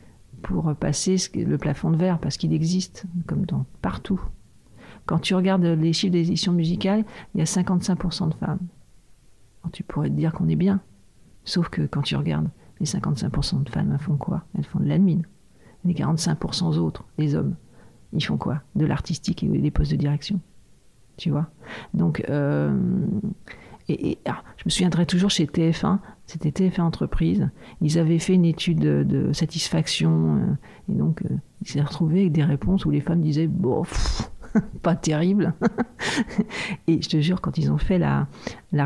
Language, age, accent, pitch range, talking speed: French, 50-69, French, 145-180 Hz, 175 wpm